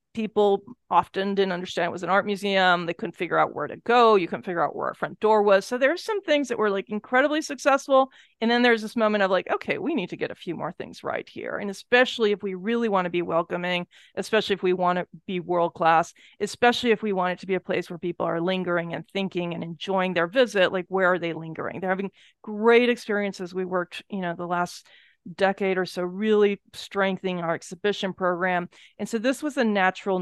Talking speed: 230 wpm